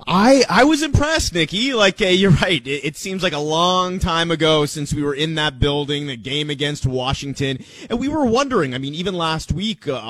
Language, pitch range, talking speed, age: English, 135-175 Hz, 220 wpm, 30-49